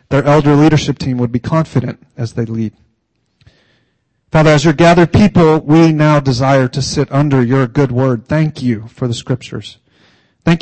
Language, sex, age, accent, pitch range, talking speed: English, male, 30-49, American, 120-150 Hz, 170 wpm